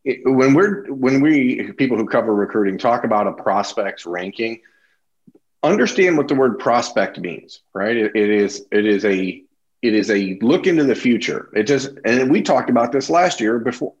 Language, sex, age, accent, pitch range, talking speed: English, male, 40-59, American, 100-130 Hz, 190 wpm